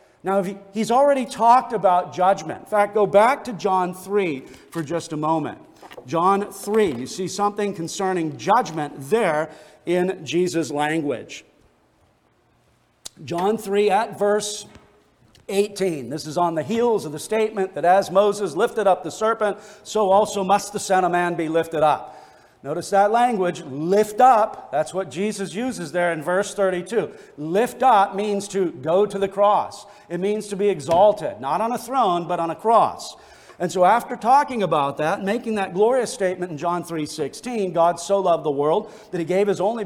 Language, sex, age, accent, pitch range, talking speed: English, male, 50-69, American, 170-210 Hz, 175 wpm